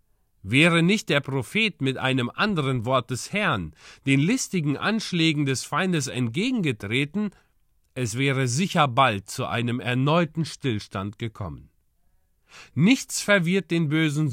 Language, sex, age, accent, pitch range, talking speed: German, male, 40-59, German, 125-185 Hz, 120 wpm